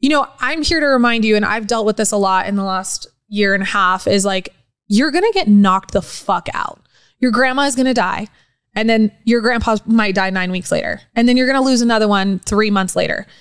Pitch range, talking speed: 205-250 Hz, 255 wpm